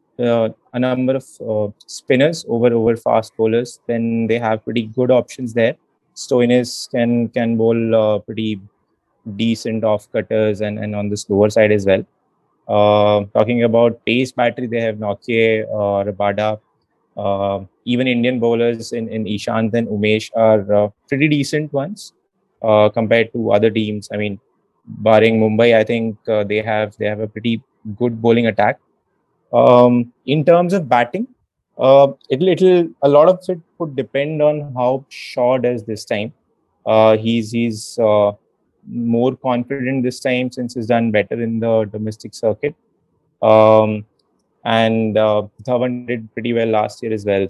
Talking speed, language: 160 wpm, English